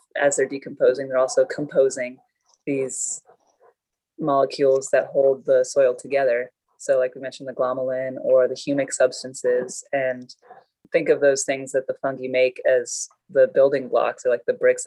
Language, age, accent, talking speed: English, 20-39, American, 160 wpm